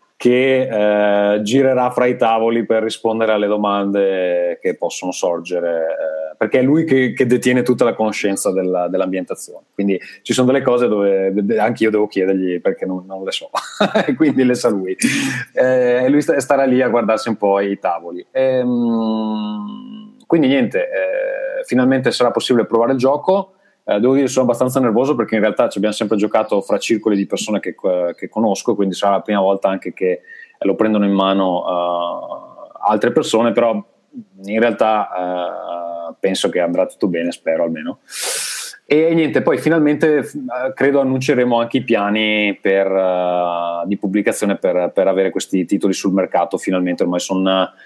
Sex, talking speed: male, 165 wpm